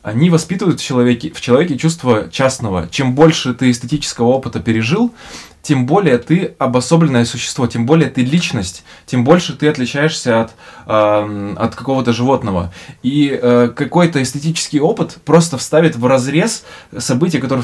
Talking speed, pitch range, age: 145 wpm, 120-155 Hz, 20-39